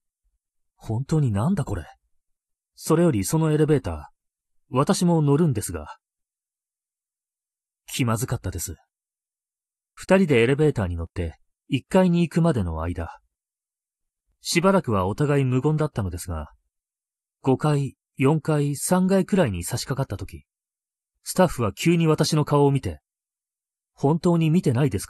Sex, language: male, Japanese